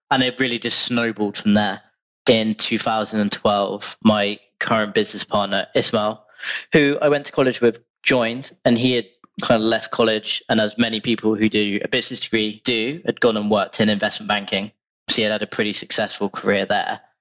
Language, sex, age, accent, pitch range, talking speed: English, male, 20-39, British, 100-115 Hz, 190 wpm